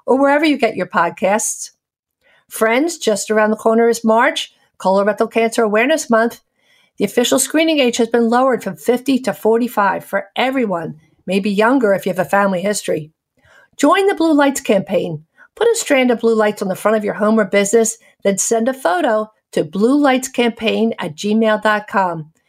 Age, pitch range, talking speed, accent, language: 50-69, 205-260 Hz, 175 wpm, American, English